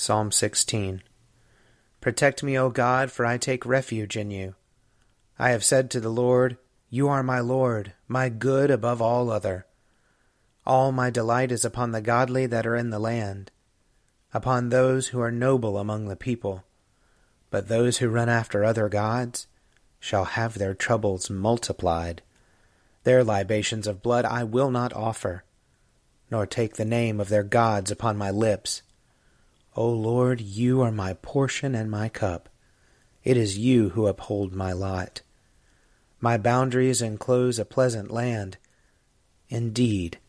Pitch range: 105-125 Hz